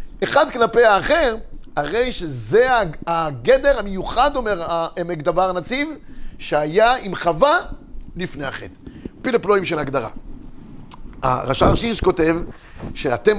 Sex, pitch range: male, 170-250 Hz